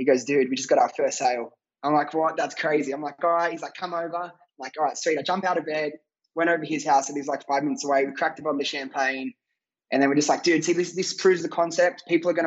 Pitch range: 140-165 Hz